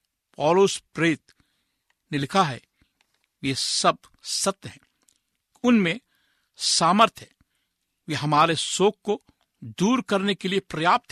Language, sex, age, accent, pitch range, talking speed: Hindi, male, 60-79, native, 145-195 Hz, 110 wpm